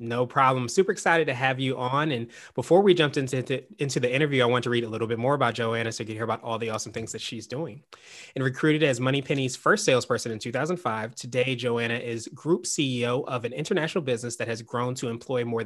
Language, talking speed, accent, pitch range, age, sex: English, 235 wpm, American, 115-145 Hz, 20-39, male